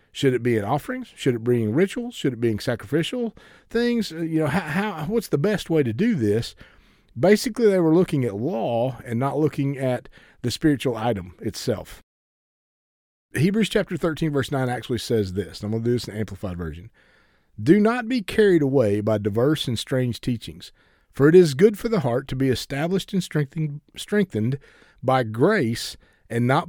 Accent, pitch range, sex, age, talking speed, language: American, 115-160 Hz, male, 40-59, 190 wpm, English